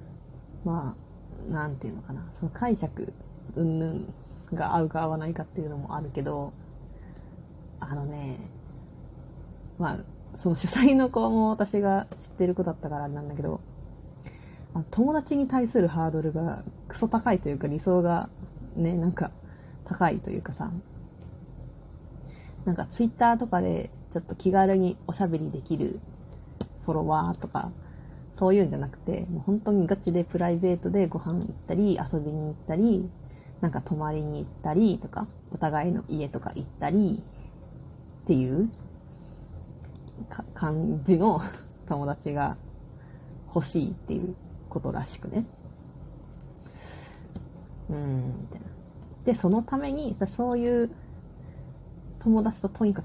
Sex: female